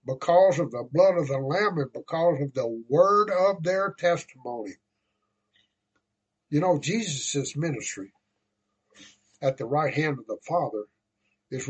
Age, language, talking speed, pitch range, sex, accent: 60-79, English, 140 wpm, 125-170 Hz, male, American